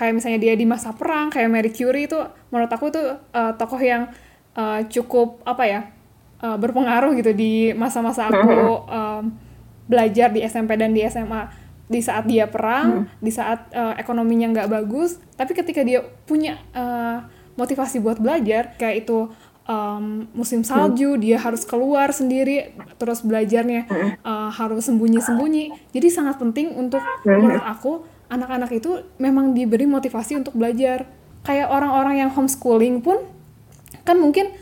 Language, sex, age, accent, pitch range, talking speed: Indonesian, female, 10-29, native, 230-275 Hz, 145 wpm